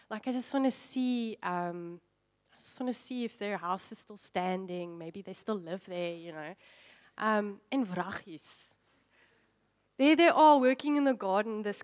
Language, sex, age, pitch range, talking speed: English, female, 20-39, 200-275 Hz, 180 wpm